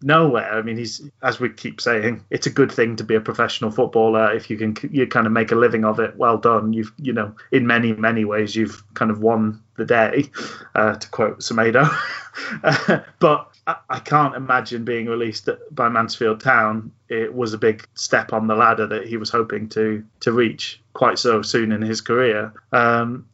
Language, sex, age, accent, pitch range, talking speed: English, male, 30-49, British, 115-140 Hz, 200 wpm